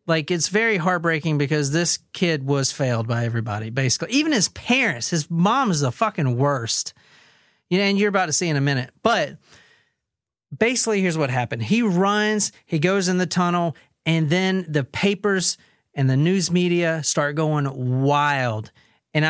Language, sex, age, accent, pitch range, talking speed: English, male, 40-59, American, 140-190 Hz, 165 wpm